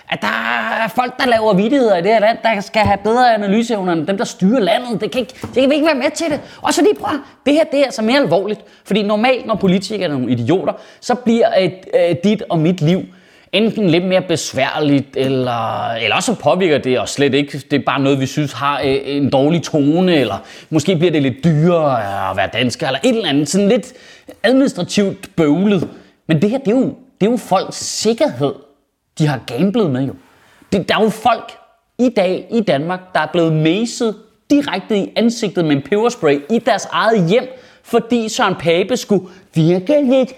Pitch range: 165-245 Hz